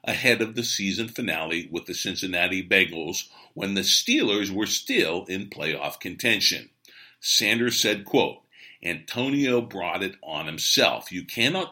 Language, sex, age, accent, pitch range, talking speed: English, male, 50-69, American, 95-125 Hz, 140 wpm